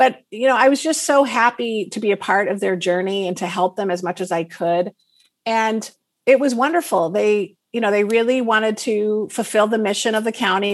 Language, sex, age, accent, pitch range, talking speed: English, female, 50-69, American, 185-235 Hz, 230 wpm